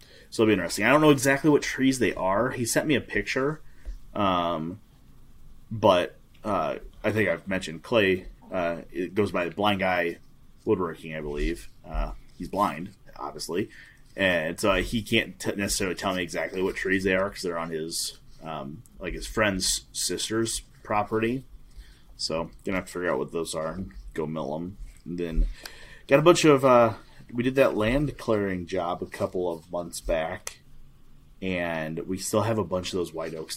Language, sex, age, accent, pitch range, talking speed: English, male, 30-49, American, 85-110 Hz, 180 wpm